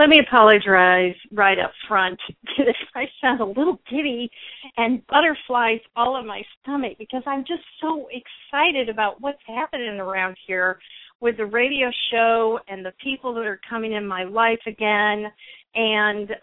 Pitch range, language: 200-255 Hz, English